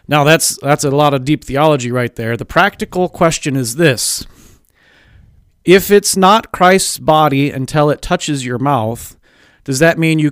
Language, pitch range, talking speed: English, 125-170 Hz, 170 wpm